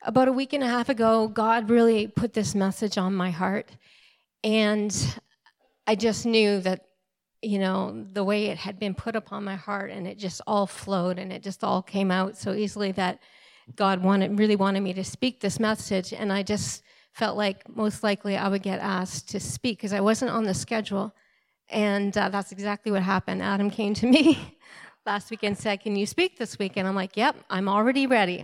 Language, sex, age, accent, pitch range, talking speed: English, female, 40-59, American, 195-235 Hz, 210 wpm